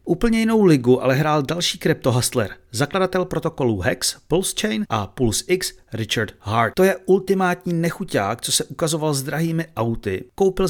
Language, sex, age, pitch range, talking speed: Czech, male, 40-59, 115-160 Hz, 150 wpm